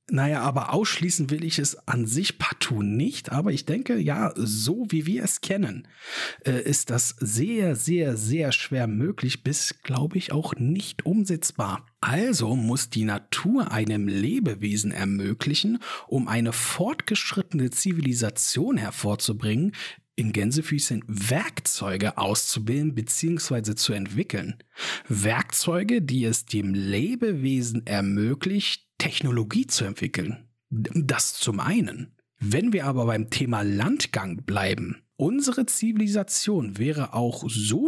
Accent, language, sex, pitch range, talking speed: German, German, male, 110-160 Hz, 120 wpm